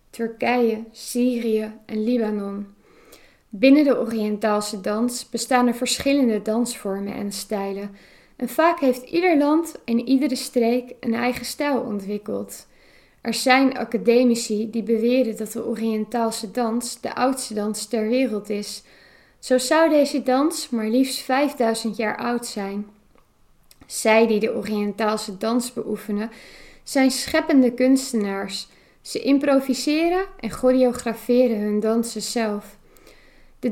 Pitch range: 220-260 Hz